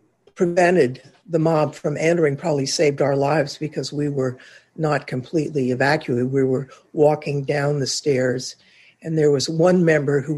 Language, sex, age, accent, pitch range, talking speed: English, female, 60-79, American, 140-165 Hz, 155 wpm